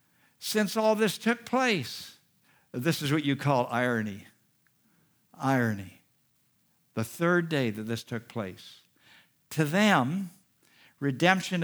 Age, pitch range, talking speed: 60-79, 150-210 Hz, 115 wpm